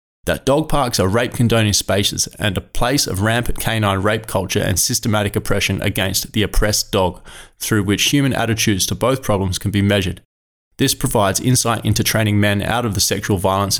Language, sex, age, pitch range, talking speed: English, male, 20-39, 100-115 Hz, 185 wpm